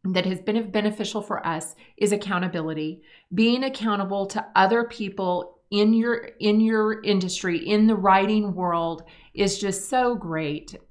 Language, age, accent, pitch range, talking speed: English, 30-49, American, 175-215 Hz, 145 wpm